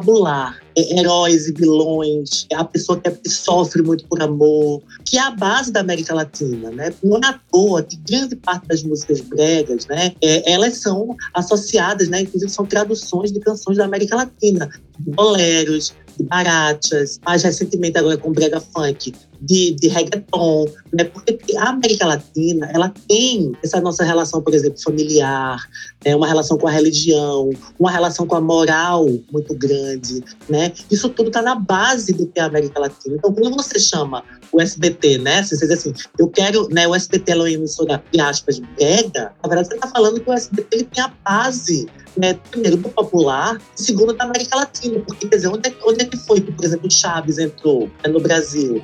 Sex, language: male, Portuguese